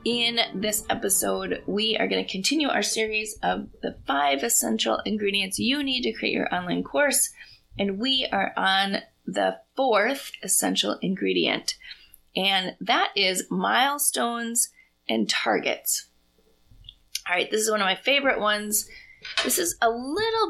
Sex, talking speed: female, 140 wpm